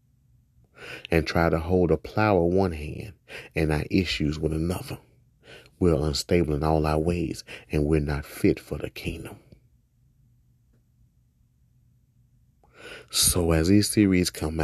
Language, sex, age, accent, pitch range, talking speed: English, male, 30-49, American, 75-105 Hz, 130 wpm